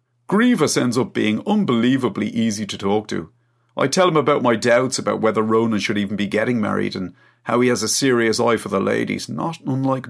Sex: male